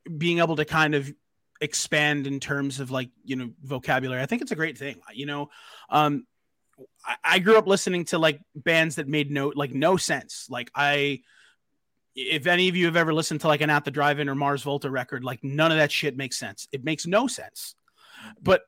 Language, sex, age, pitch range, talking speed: English, male, 30-49, 140-170 Hz, 215 wpm